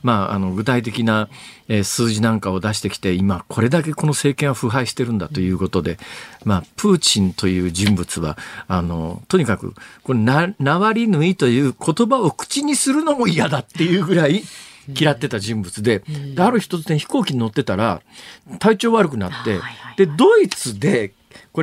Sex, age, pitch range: male, 50-69, 110-185 Hz